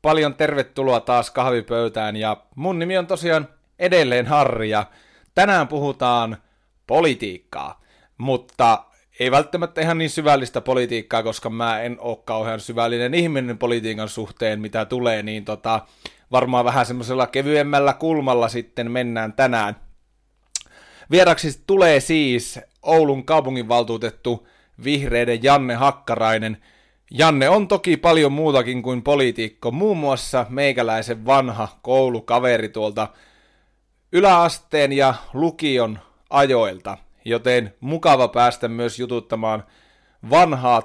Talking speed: 110 wpm